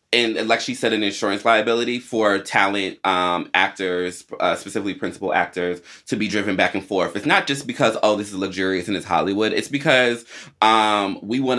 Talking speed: 190 wpm